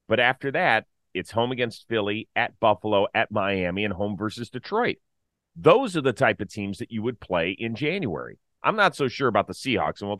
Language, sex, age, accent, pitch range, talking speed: English, male, 30-49, American, 95-135 Hz, 210 wpm